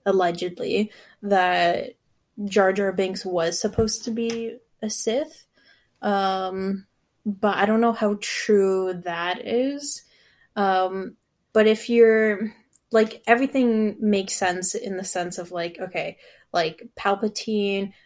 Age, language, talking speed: 10-29, English, 120 wpm